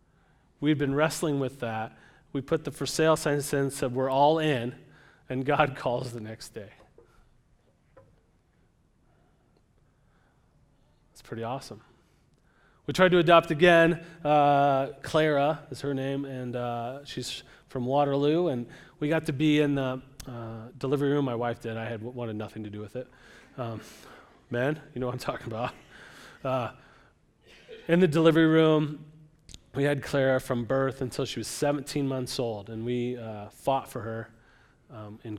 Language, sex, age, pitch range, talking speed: English, male, 30-49, 120-145 Hz, 160 wpm